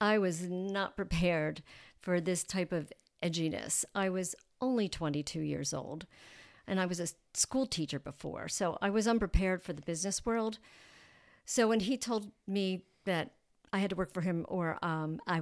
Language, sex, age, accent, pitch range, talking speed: English, female, 50-69, American, 175-225 Hz, 175 wpm